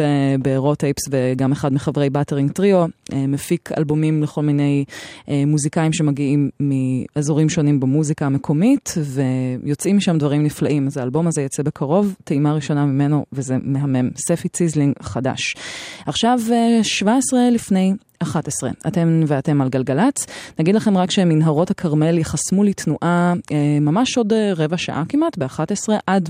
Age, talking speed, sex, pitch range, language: 20-39, 130 wpm, female, 140-175 Hz, Hebrew